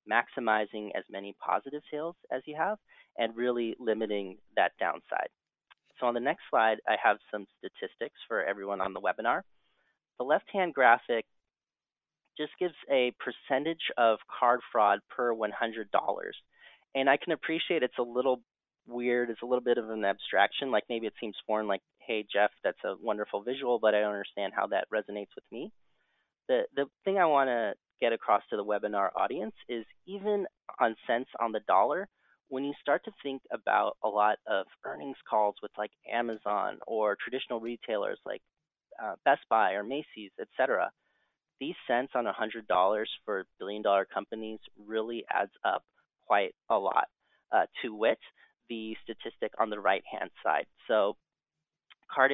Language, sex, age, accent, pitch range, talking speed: English, male, 30-49, American, 105-130 Hz, 165 wpm